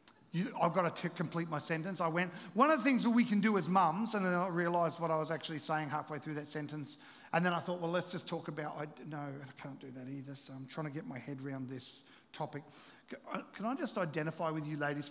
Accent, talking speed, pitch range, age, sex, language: Australian, 250 wpm, 155-195 Hz, 40-59, male, English